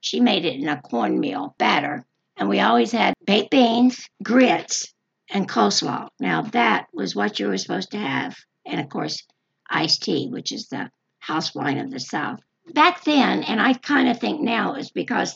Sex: female